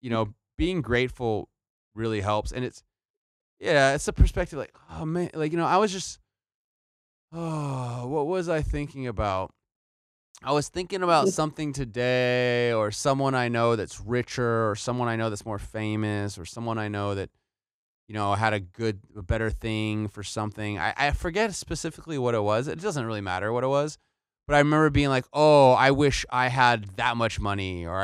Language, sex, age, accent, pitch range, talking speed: English, male, 20-39, American, 110-145 Hz, 190 wpm